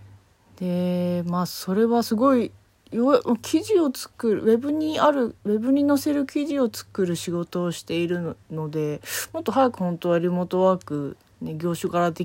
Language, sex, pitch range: Japanese, female, 155-225 Hz